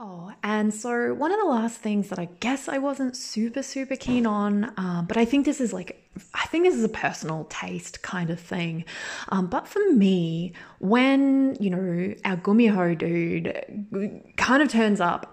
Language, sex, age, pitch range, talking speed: English, female, 20-39, 180-255 Hz, 190 wpm